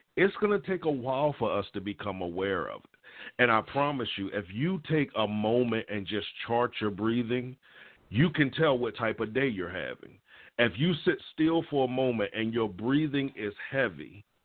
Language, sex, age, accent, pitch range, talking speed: English, male, 50-69, American, 100-130 Hz, 200 wpm